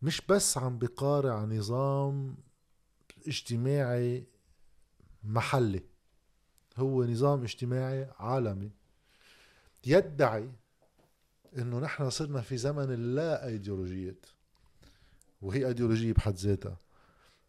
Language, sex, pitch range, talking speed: Arabic, male, 105-140 Hz, 80 wpm